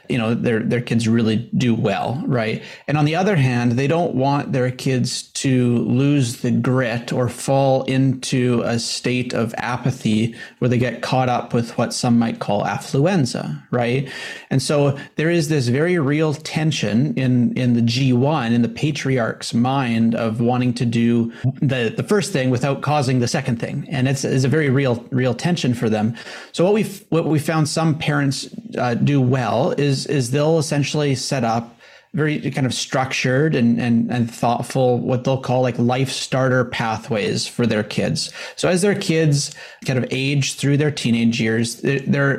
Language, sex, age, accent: English, male, 30-49, American